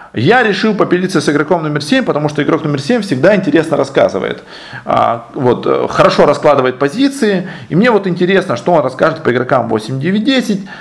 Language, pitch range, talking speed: Russian, 155-230 Hz, 170 wpm